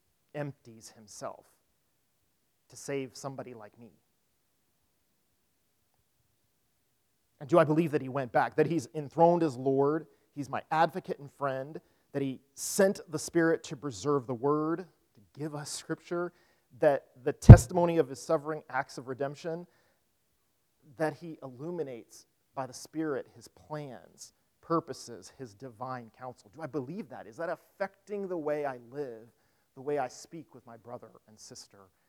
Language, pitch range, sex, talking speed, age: English, 130-160 Hz, male, 150 wpm, 40-59